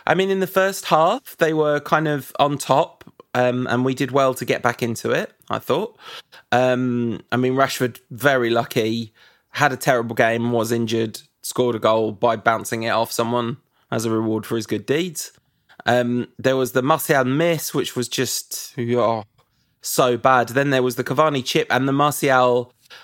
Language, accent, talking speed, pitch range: English, British, 190 wpm, 120-145 Hz